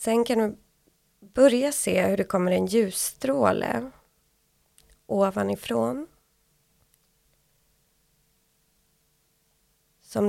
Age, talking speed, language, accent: 20-39, 70 wpm, Swedish, native